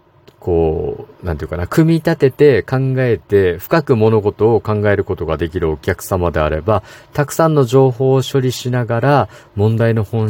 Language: Japanese